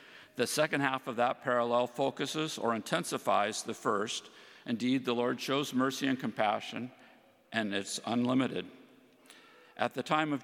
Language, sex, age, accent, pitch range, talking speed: English, male, 50-69, American, 110-135 Hz, 145 wpm